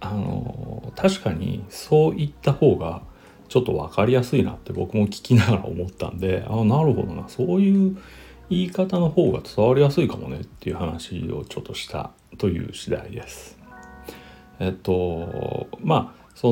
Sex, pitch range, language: male, 95-145 Hz, Japanese